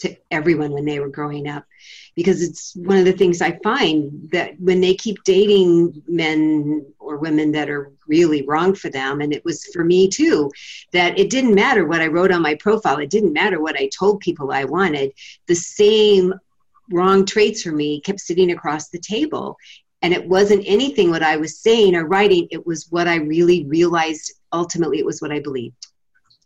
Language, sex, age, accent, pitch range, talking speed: English, female, 50-69, American, 165-205 Hz, 200 wpm